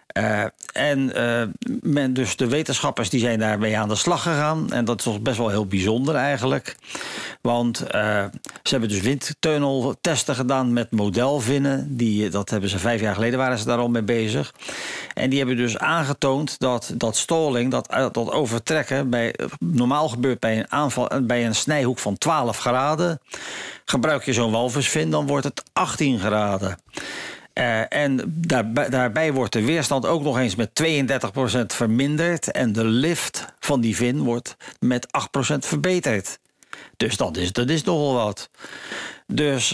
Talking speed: 160 wpm